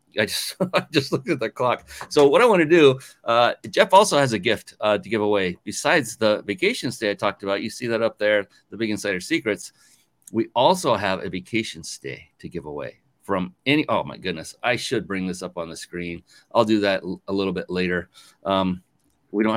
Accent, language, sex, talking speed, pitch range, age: American, English, male, 225 wpm, 90-110 Hz, 40-59